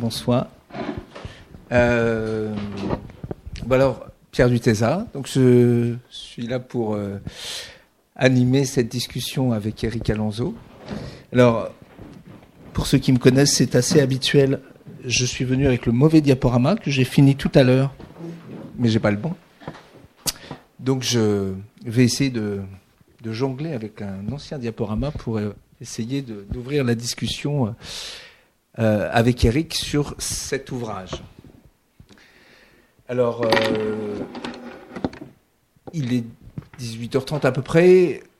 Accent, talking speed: French, 125 wpm